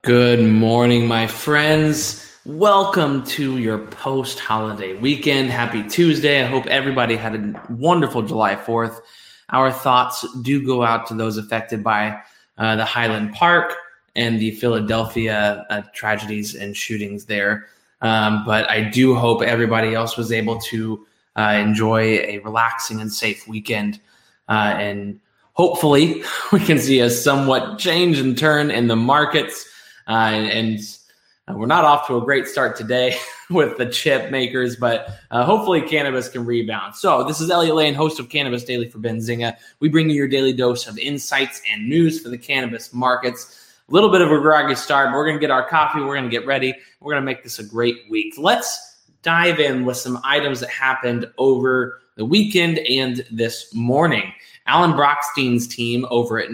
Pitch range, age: 115-145 Hz, 20-39